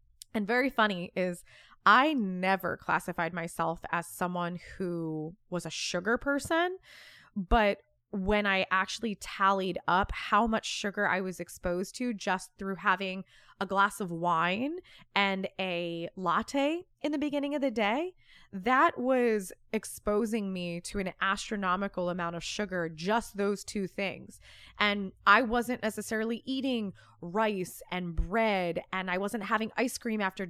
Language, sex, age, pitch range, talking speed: English, female, 20-39, 180-220 Hz, 145 wpm